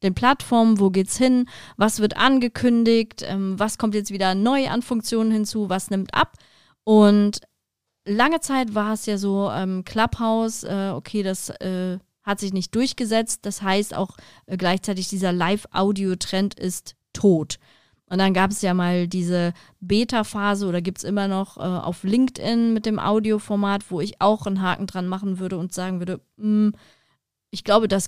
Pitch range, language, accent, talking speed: 185-220 Hz, German, German, 170 wpm